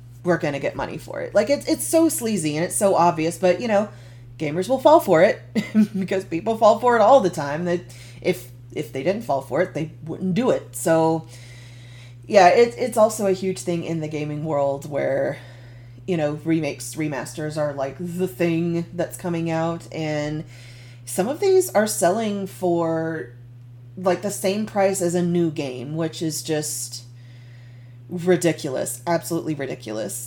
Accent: American